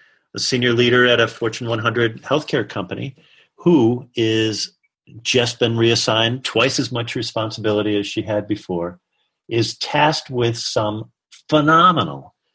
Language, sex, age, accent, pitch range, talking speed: English, male, 50-69, American, 115-165 Hz, 130 wpm